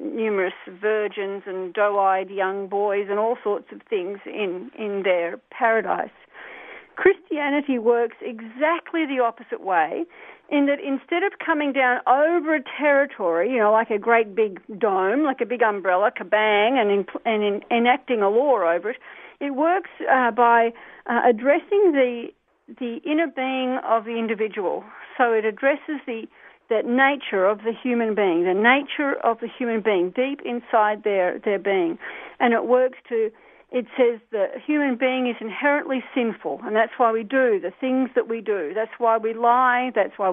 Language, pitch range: English, 215-275 Hz